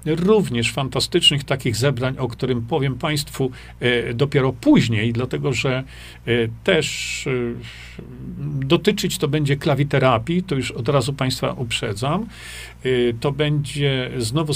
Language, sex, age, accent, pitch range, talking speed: Polish, male, 40-59, native, 120-155 Hz, 105 wpm